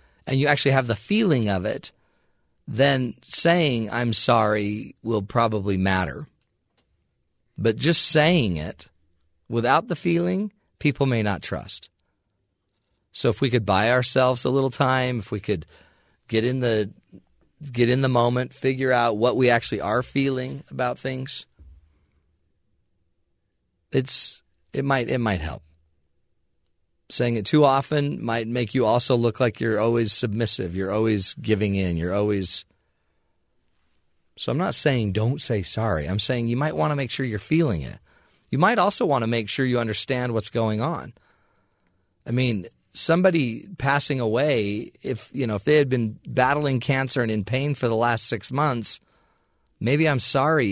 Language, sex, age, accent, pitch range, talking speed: English, male, 40-59, American, 100-135 Hz, 160 wpm